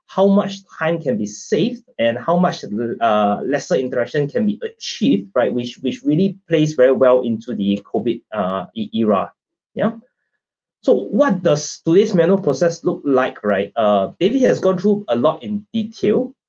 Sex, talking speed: male, 165 wpm